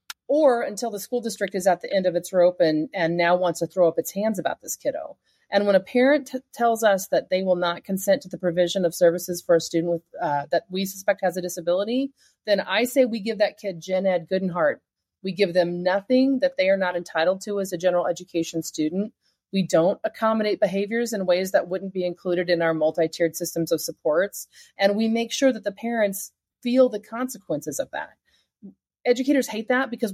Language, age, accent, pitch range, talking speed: English, 30-49, American, 175-225 Hz, 220 wpm